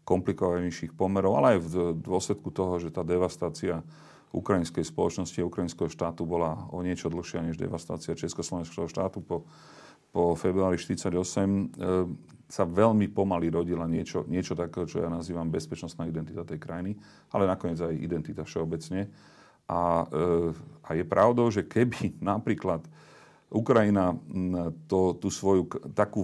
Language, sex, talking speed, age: Slovak, male, 135 wpm, 40-59